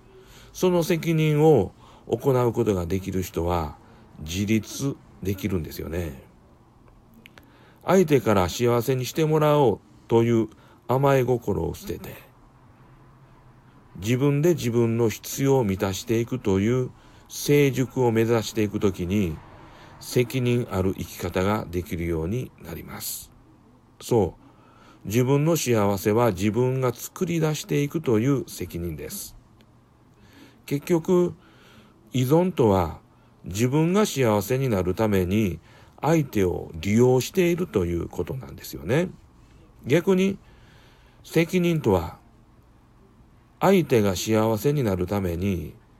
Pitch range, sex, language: 100-135 Hz, male, Japanese